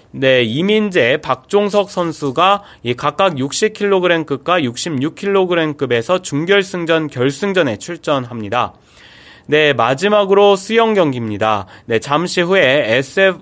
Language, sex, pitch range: Korean, male, 140-195 Hz